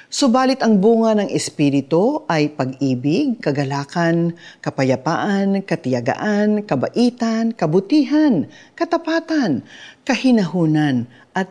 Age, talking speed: 40-59, 80 wpm